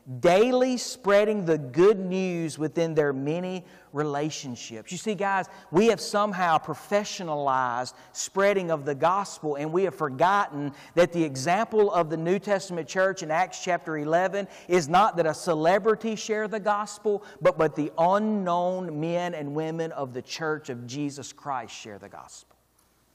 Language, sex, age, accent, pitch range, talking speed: English, male, 40-59, American, 160-205 Hz, 155 wpm